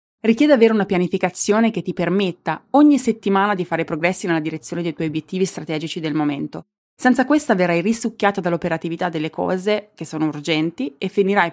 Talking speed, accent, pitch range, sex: 165 wpm, native, 160-205 Hz, female